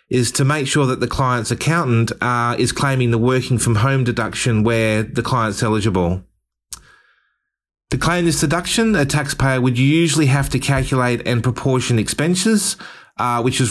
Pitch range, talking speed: 115-140 Hz, 160 wpm